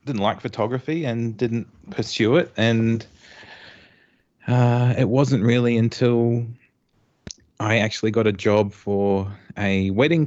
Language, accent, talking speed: English, Australian, 125 wpm